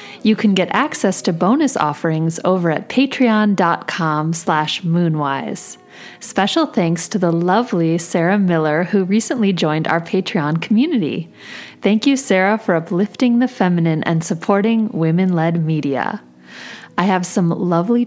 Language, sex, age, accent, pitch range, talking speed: English, female, 30-49, American, 165-220 Hz, 135 wpm